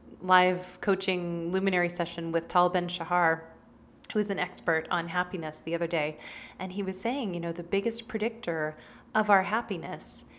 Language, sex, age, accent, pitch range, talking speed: English, female, 30-49, American, 170-230 Hz, 160 wpm